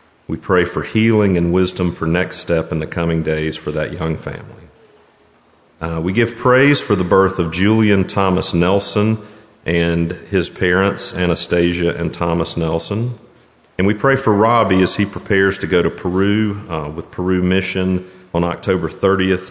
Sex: male